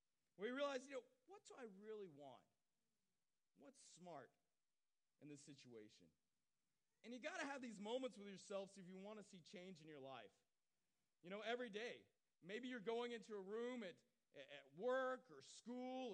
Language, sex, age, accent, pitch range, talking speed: English, male, 40-59, American, 185-245 Hz, 180 wpm